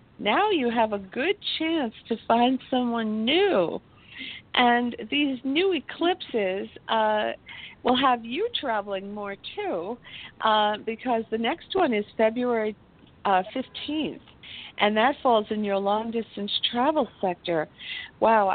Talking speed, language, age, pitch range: 125 wpm, English, 50-69, 200-245 Hz